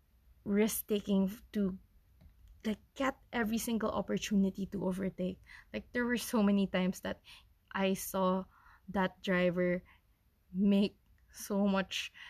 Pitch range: 185-215 Hz